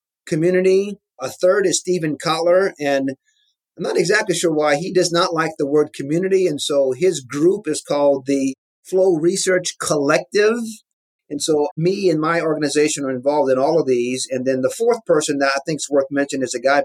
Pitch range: 140-185 Hz